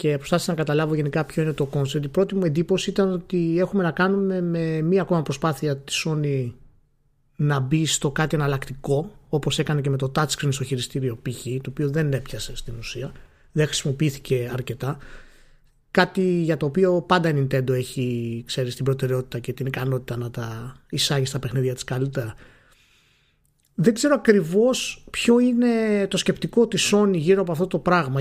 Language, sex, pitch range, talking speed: Greek, male, 135-180 Hz, 170 wpm